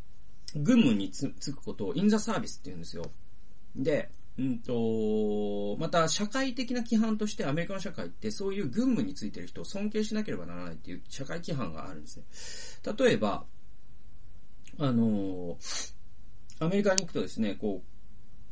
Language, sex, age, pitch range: Japanese, male, 40-59, 100-170 Hz